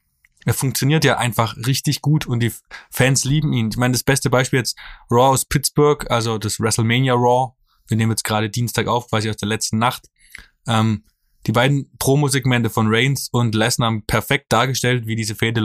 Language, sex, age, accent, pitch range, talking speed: German, male, 20-39, German, 110-130 Hz, 190 wpm